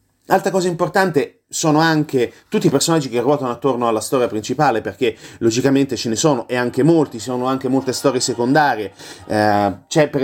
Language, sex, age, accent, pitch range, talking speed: Italian, male, 30-49, native, 115-145 Hz, 180 wpm